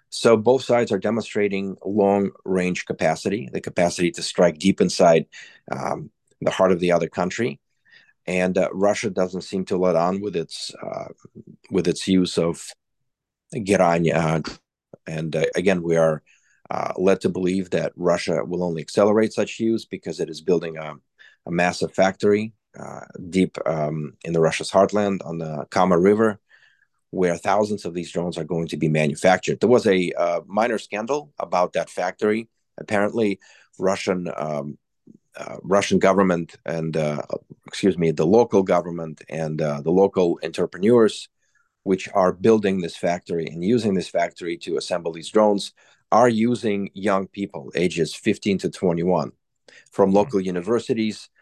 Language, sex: English, male